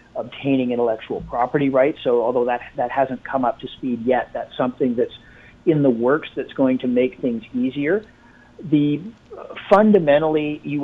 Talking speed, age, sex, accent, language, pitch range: 165 wpm, 40-59, male, American, English, 125-155 Hz